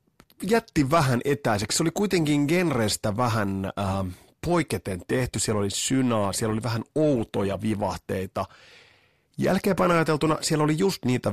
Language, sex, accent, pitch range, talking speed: Finnish, male, native, 95-130 Hz, 130 wpm